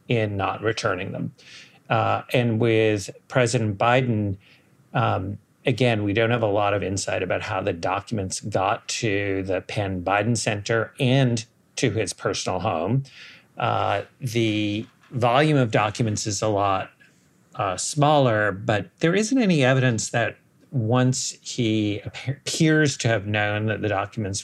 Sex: male